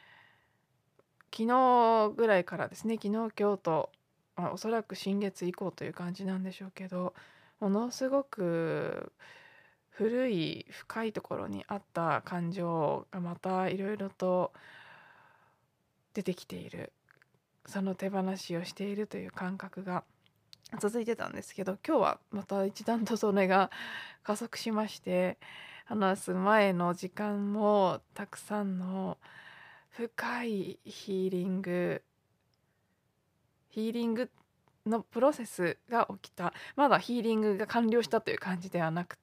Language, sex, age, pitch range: Japanese, female, 20-39, 180-215 Hz